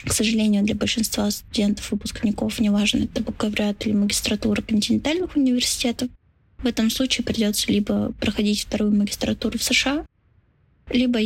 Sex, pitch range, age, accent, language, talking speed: female, 205-235 Hz, 10-29, native, Russian, 130 wpm